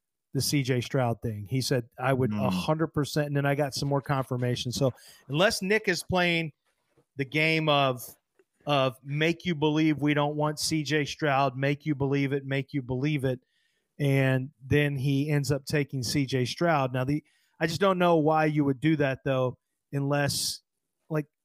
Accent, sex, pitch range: American, male, 140-165 Hz